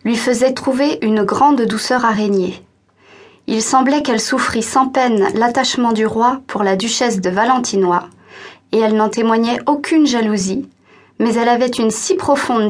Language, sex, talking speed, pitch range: French, female, 160 wpm, 210-265 Hz